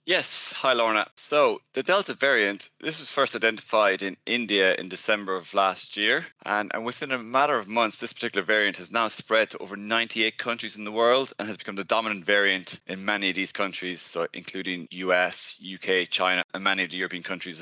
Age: 20-39